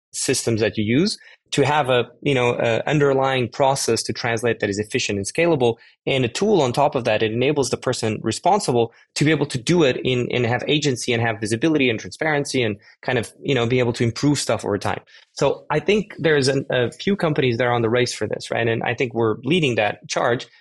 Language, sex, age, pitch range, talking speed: English, male, 20-39, 115-140 Hz, 230 wpm